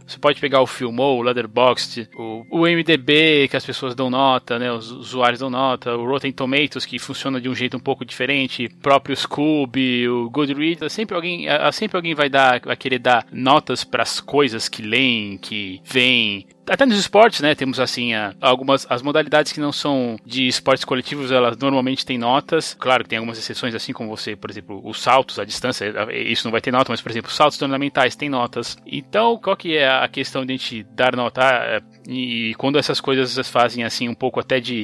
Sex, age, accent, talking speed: male, 20-39, Brazilian, 210 wpm